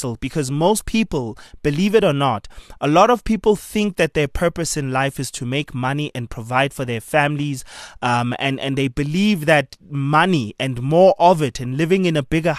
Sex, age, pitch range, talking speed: male, 20-39, 135-170 Hz, 200 wpm